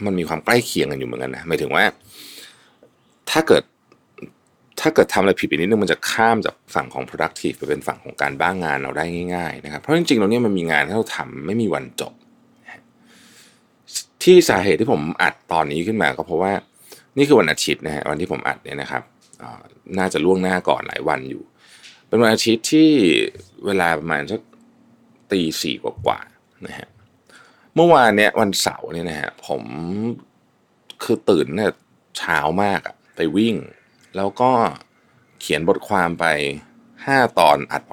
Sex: male